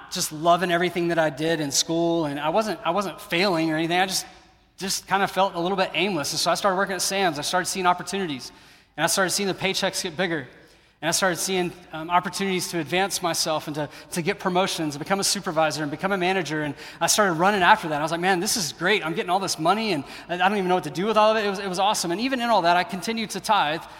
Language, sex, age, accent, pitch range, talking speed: English, male, 30-49, American, 145-185 Hz, 280 wpm